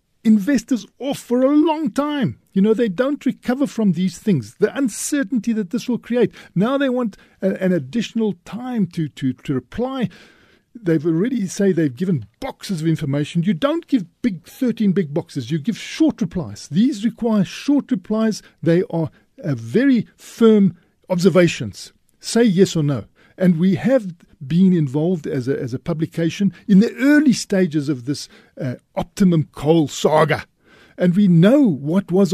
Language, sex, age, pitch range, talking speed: English, male, 50-69, 170-235 Hz, 165 wpm